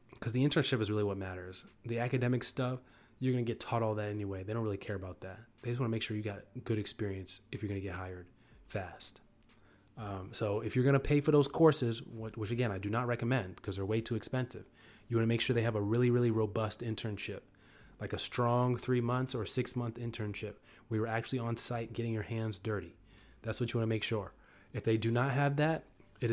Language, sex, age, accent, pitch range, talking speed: English, male, 20-39, American, 105-125 Hz, 235 wpm